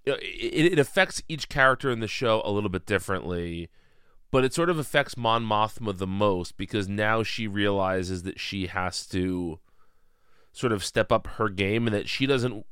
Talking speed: 185 wpm